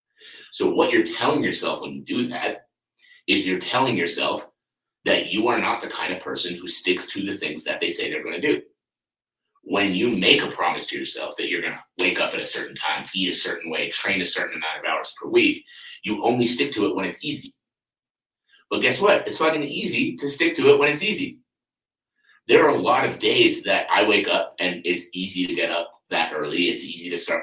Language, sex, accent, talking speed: English, male, American, 225 wpm